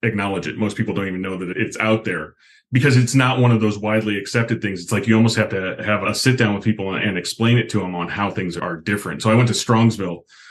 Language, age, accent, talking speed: English, 30-49, American, 270 wpm